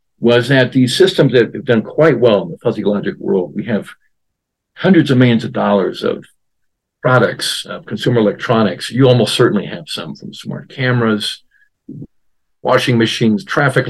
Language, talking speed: English, 160 wpm